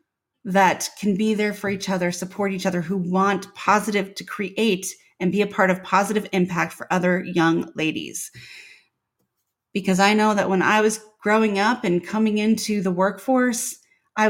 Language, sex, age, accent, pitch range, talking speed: English, female, 30-49, American, 180-220 Hz, 170 wpm